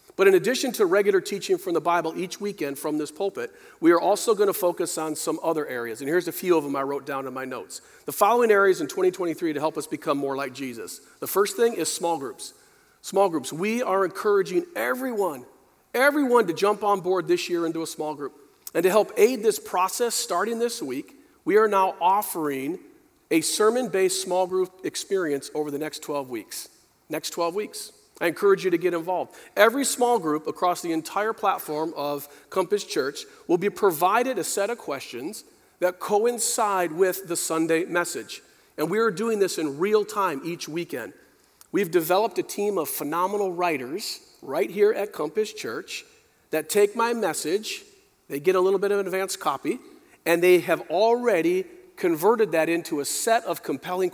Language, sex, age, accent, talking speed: English, male, 40-59, American, 190 wpm